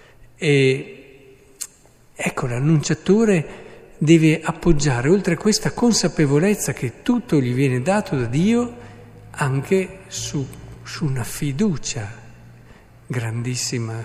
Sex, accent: male, native